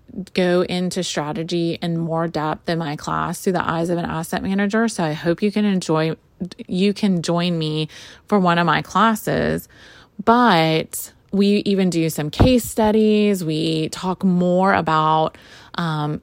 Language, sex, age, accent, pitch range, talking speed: English, female, 30-49, American, 165-210 Hz, 160 wpm